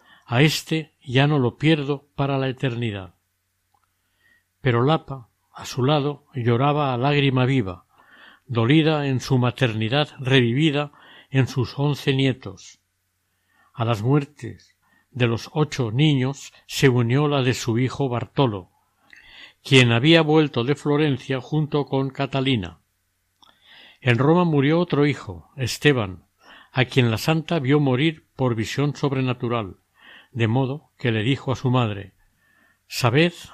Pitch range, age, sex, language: 115-150 Hz, 60-79, male, Spanish